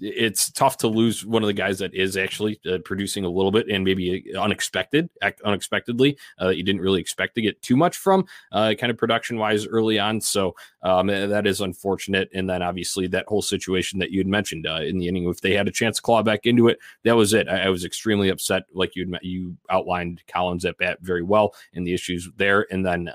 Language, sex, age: English, male, 20-39